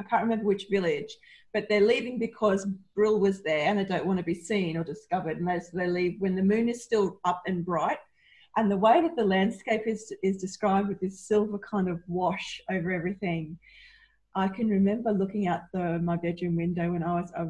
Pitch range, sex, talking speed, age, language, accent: 175-210 Hz, female, 215 wpm, 30-49, English, Australian